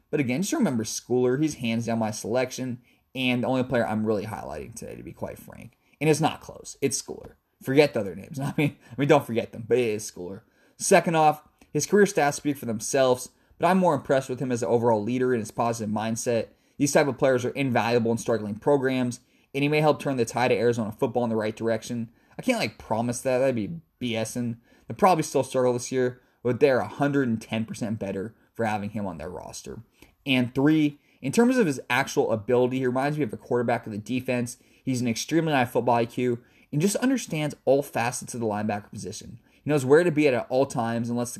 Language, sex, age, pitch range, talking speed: English, male, 20-39, 115-145 Hz, 225 wpm